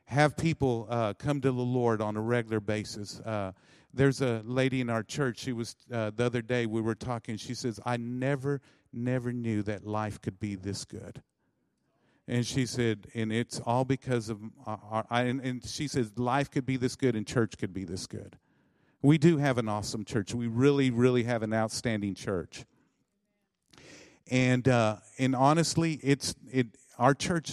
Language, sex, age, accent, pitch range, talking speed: English, male, 50-69, American, 105-125 Hz, 185 wpm